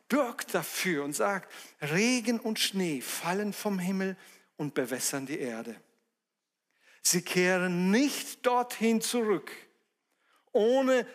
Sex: male